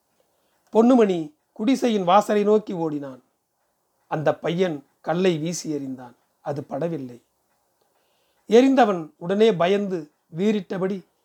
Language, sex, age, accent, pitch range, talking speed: Tamil, male, 40-59, native, 160-215 Hz, 85 wpm